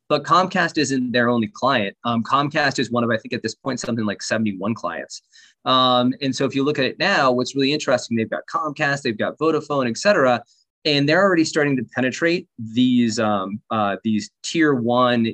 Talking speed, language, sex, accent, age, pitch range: 205 wpm, English, male, American, 20-39, 115-140 Hz